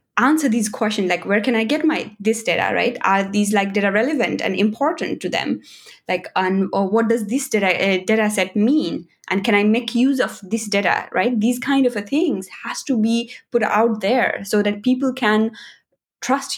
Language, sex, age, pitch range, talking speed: English, female, 20-39, 205-255 Hz, 205 wpm